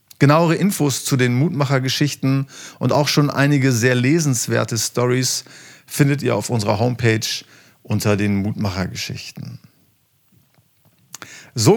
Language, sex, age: German, male, 40-59